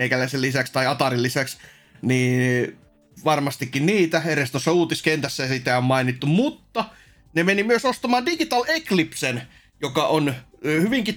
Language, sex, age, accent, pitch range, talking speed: Finnish, male, 30-49, native, 130-170 Hz, 120 wpm